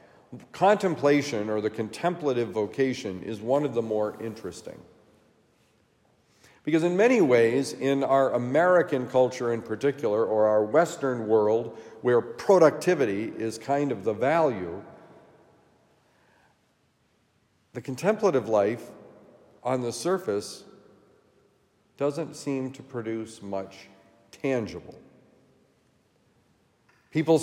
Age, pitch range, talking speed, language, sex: 50-69, 115-150 Hz, 100 wpm, English, male